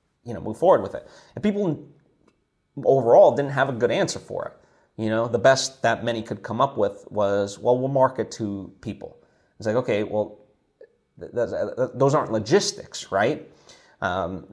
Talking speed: 180 wpm